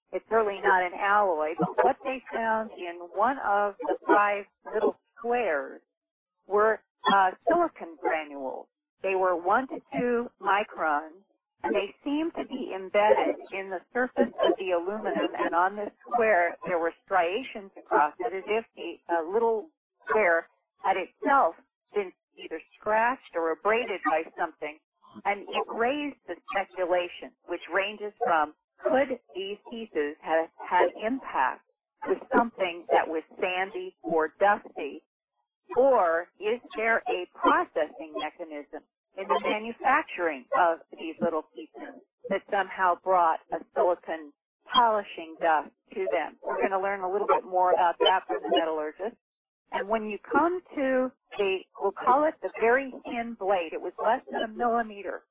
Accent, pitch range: American, 175-250 Hz